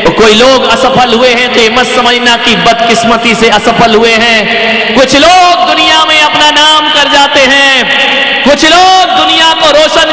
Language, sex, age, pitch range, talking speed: Hindi, male, 50-69, 225-305 Hz, 165 wpm